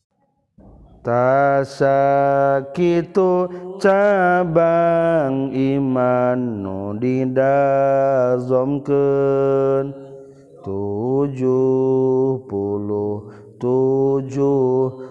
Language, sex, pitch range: Indonesian, male, 110-135 Hz